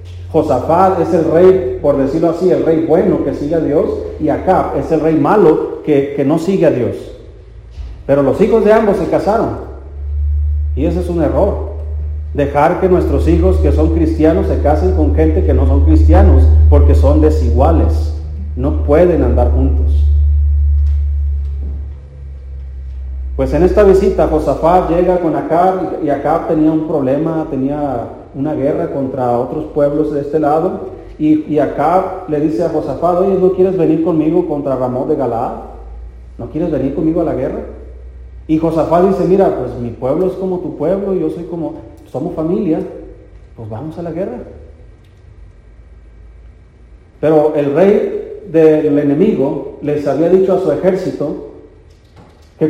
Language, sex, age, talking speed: Spanish, male, 40-59, 155 wpm